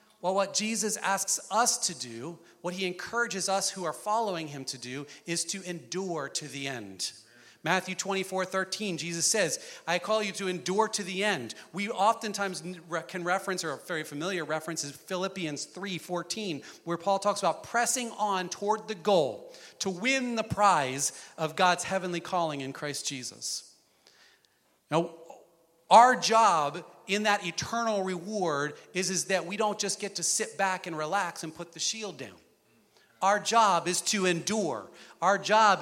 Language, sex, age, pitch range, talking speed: English, male, 40-59, 170-215 Hz, 170 wpm